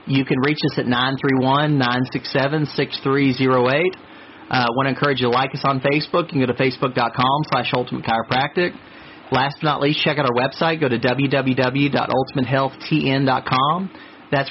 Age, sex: 40-59, male